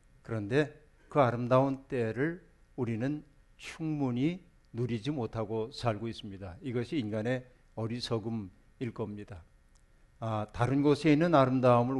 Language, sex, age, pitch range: Korean, male, 50-69, 110-135 Hz